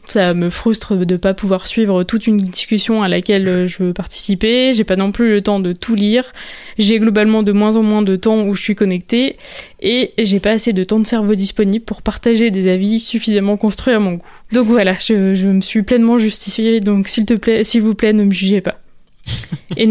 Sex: female